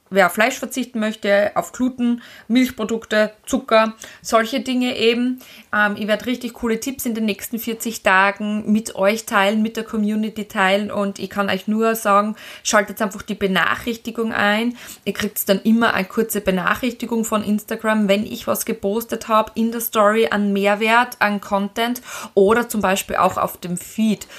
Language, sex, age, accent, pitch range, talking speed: German, female, 20-39, German, 185-230 Hz, 170 wpm